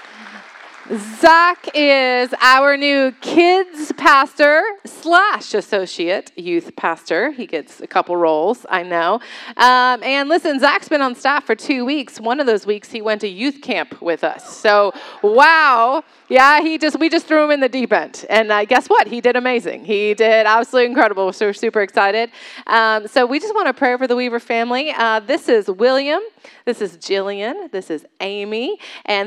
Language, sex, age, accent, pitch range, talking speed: English, female, 30-49, American, 195-255 Hz, 180 wpm